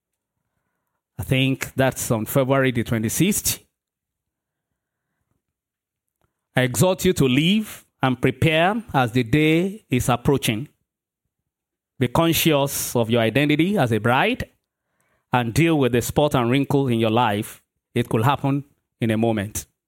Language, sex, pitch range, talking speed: English, male, 115-140 Hz, 130 wpm